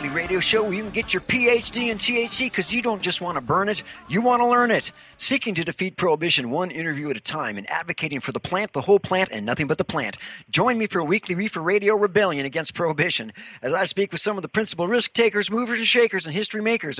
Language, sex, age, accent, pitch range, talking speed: English, male, 50-69, American, 155-210 Hz, 250 wpm